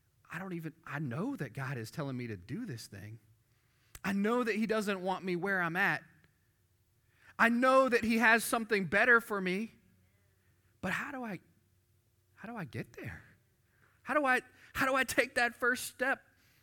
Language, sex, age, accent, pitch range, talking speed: English, male, 30-49, American, 125-190 Hz, 180 wpm